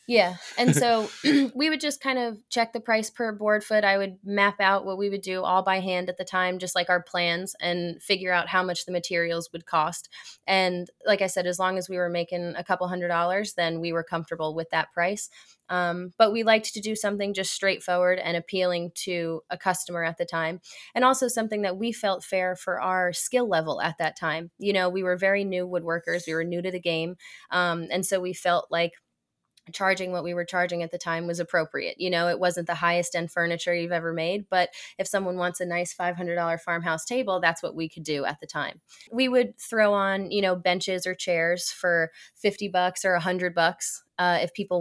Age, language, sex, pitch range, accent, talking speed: 20-39, English, female, 170-195 Hz, American, 225 wpm